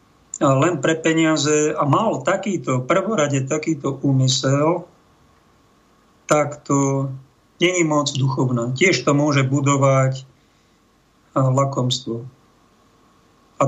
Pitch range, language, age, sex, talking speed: 140-170 Hz, Slovak, 50-69, male, 90 wpm